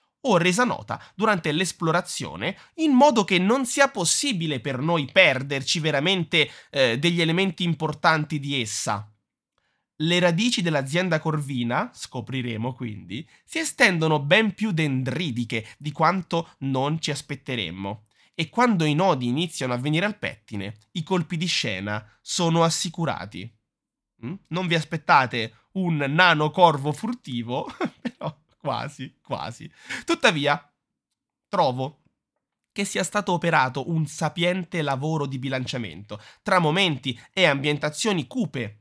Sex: male